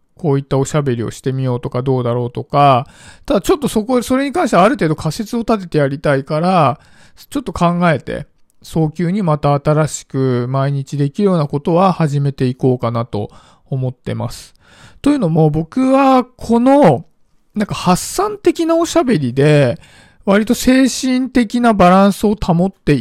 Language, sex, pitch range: Japanese, male, 145-210 Hz